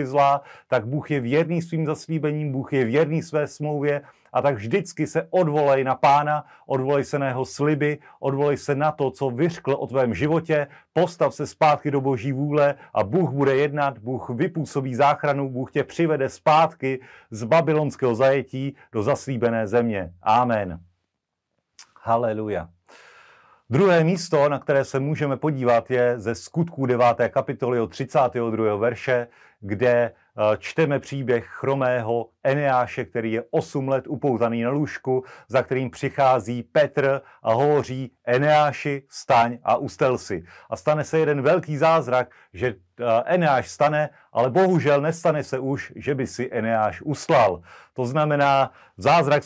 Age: 40-59